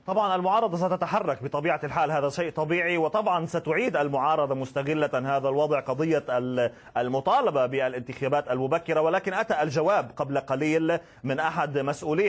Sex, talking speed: male, 125 wpm